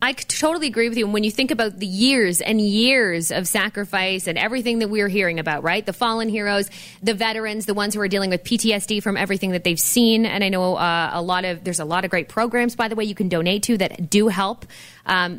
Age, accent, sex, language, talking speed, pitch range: 20-39, American, female, English, 250 wpm, 185-235 Hz